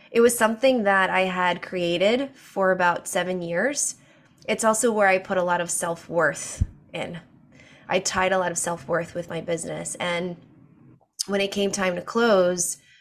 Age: 20-39